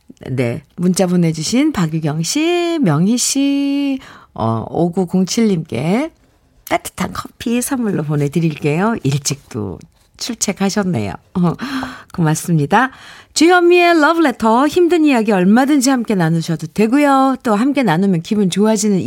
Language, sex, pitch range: Korean, female, 150-235 Hz